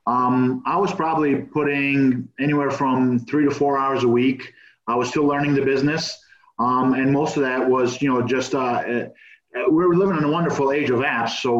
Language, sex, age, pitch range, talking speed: English, male, 30-49, 120-140 Hz, 200 wpm